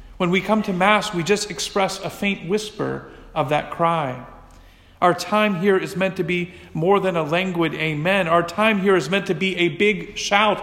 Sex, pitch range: male, 155-195 Hz